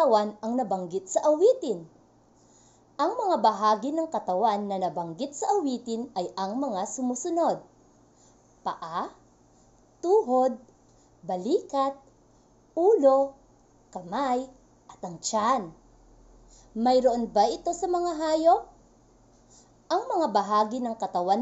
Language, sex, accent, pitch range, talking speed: Filipino, female, native, 195-315 Hz, 100 wpm